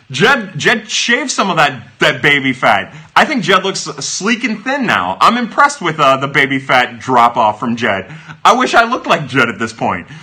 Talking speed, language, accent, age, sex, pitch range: 210 wpm, English, American, 30-49, male, 140-200 Hz